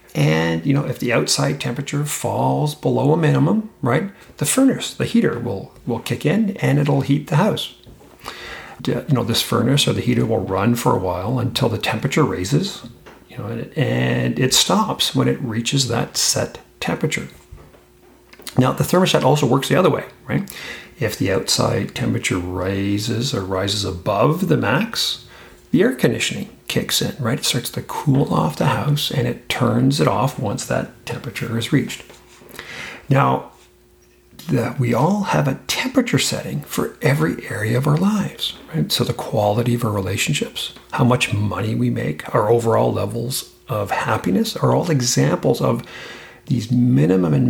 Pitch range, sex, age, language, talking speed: 110-140 Hz, male, 40-59, English, 165 wpm